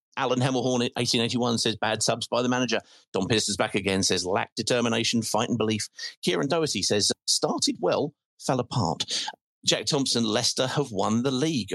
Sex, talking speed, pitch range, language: male, 170 wpm, 105-135 Hz, English